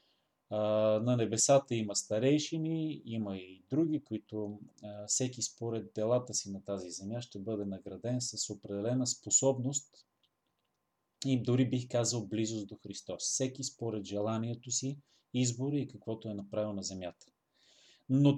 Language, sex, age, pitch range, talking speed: Bulgarian, male, 30-49, 105-140 Hz, 130 wpm